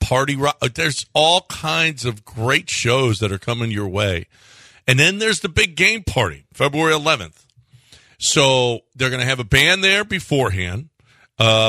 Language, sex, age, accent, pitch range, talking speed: English, male, 50-69, American, 110-145 Hz, 160 wpm